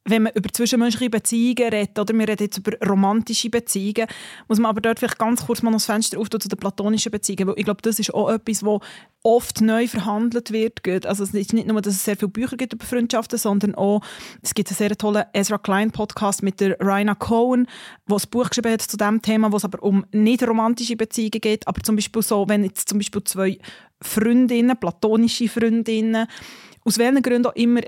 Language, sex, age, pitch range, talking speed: German, female, 20-39, 210-235 Hz, 210 wpm